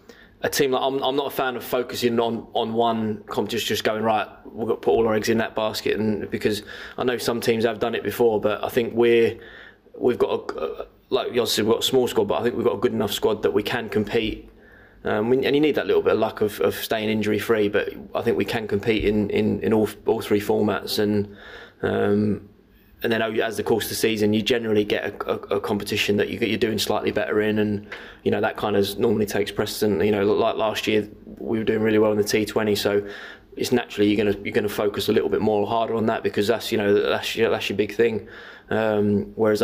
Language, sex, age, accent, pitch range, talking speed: English, male, 20-39, British, 105-115 Hz, 250 wpm